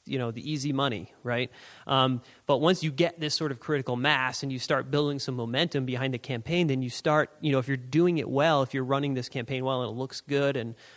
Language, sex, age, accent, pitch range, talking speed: English, male, 30-49, American, 120-150 Hz, 250 wpm